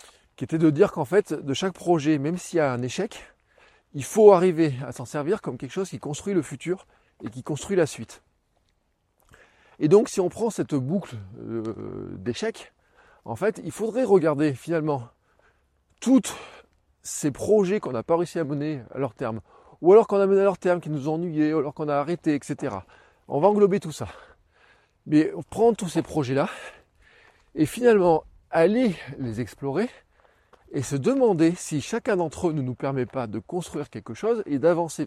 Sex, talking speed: male, 185 wpm